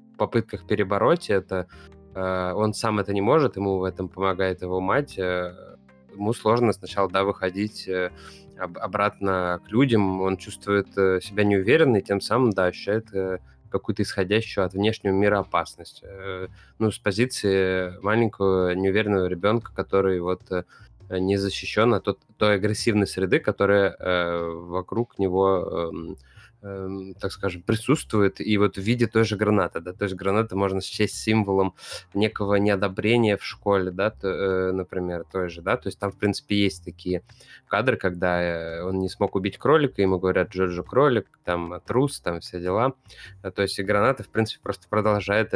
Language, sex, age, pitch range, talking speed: Russian, male, 20-39, 90-105 Hz, 150 wpm